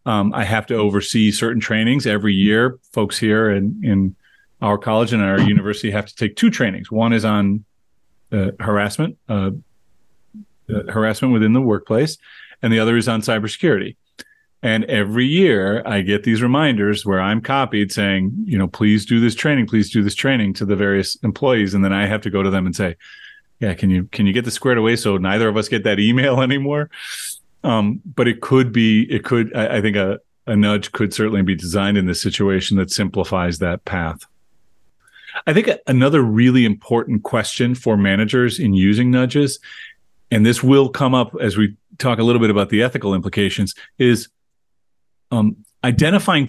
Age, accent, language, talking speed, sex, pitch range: 30-49, American, English, 185 wpm, male, 100-120 Hz